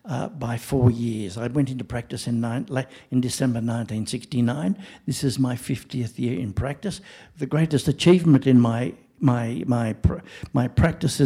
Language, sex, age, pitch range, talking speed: English, male, 60-79, 125-150 Hz, 155 wpm